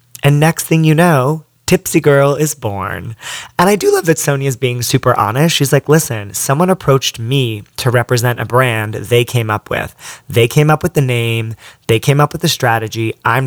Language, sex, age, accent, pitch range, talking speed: English, male, 30-49, American, 110-140 Hz, 205 wpm